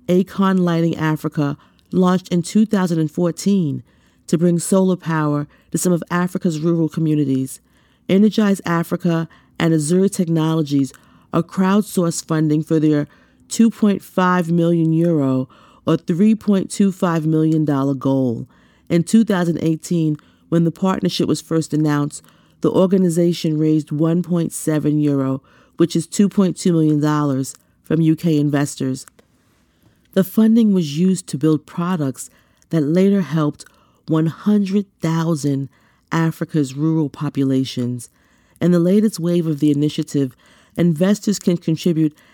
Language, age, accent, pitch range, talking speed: English, 40-59, American, 150-180 Hz, 110 wpm